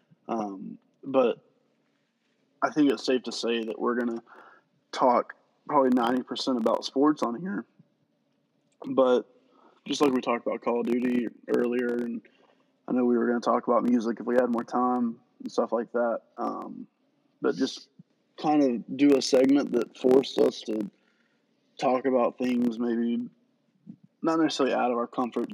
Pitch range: 120-150 Hz